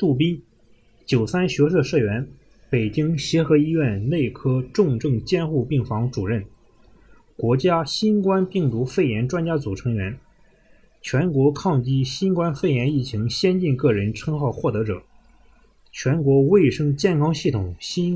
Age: 20-39